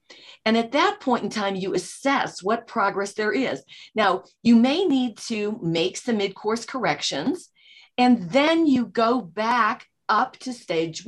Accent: American